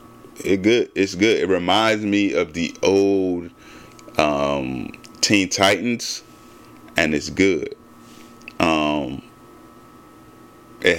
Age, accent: 20-39, American